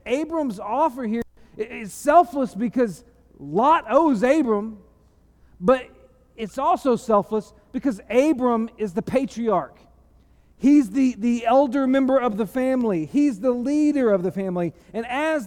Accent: American